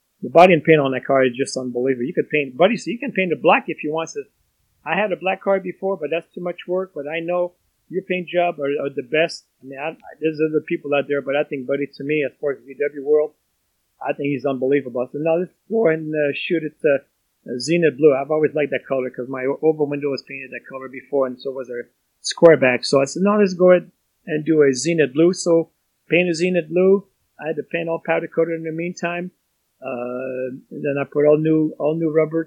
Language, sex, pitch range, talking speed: English, male, 140-170 Hz, 255 wpm